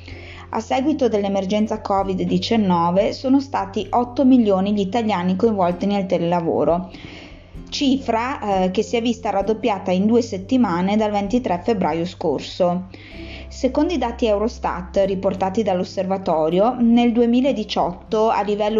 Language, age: Italian, 20-39